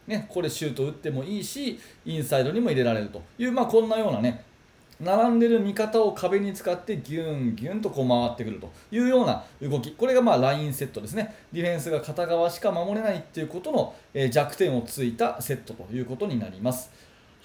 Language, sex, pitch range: Japanese, male, 135-220 Hz